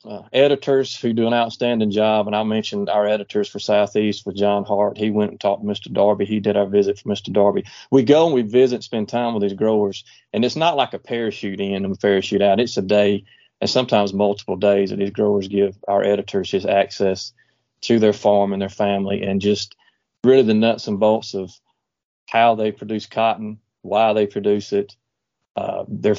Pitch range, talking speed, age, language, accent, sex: 100-110 Hz, 210 wpm, 30-49, English, American, male